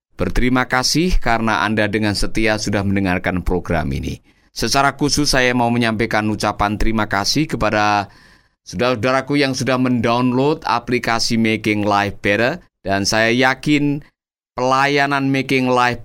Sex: male